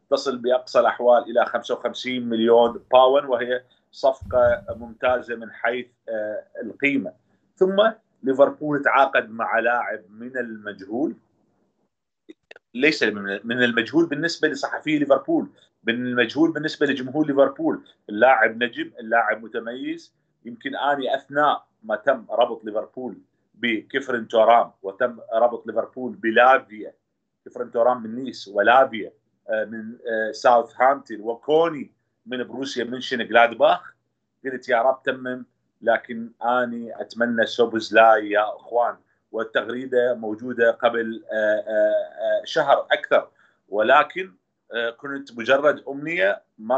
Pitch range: 115-145 Hz